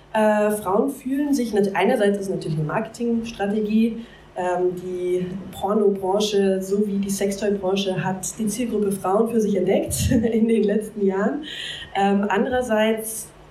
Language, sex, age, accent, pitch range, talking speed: German, female, 20-39, German, 185-225 Hz, 115 wpm